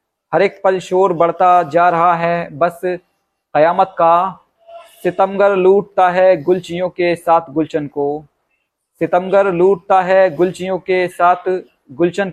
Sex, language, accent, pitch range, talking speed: male, Hindi, native, 165-190 Hz, 125 wpm